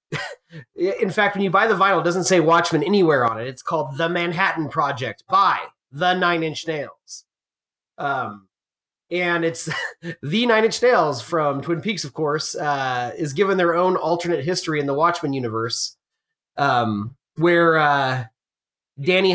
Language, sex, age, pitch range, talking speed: English, male, 30-49, 140-180 Hz, 160 wpm